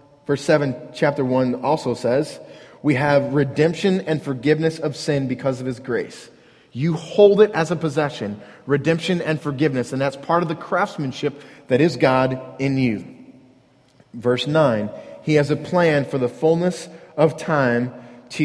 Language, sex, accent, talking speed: English, male, American, 160 wpm